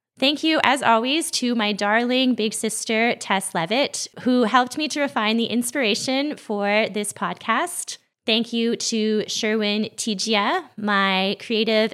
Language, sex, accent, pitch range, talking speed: English, female, American, 210-265 Hz, 140 wpm